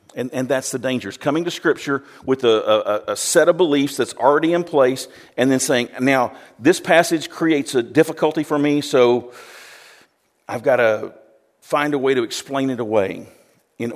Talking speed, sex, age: 185 wpm, male, 50-69